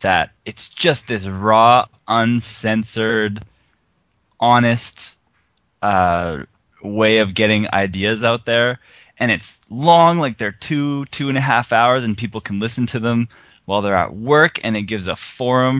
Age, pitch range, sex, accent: 20-39, 95-120 Hz, male, American